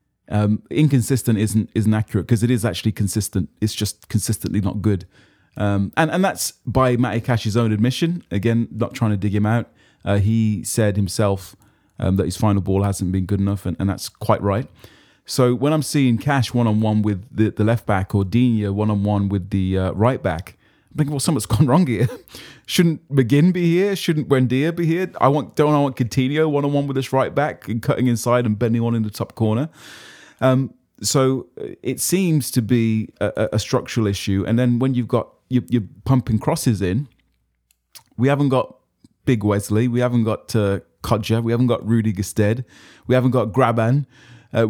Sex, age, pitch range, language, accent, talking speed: male, 30-49, 105-130 Hz, English, British, 195 wpm